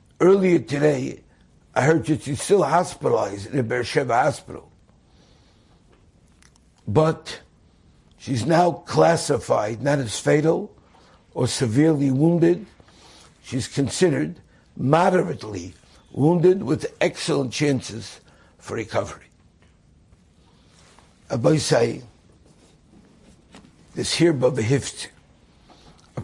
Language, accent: English, American